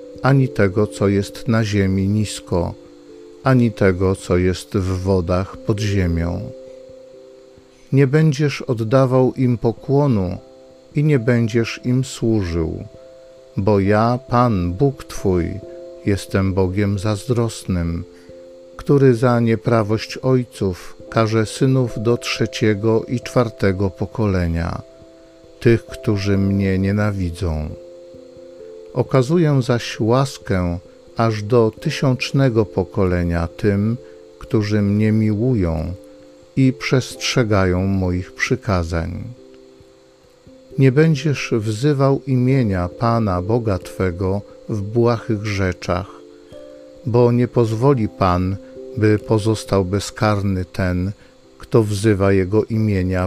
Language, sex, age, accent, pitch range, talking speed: Polish, male, 50-69, native, 90-125 Hz, 95 wpm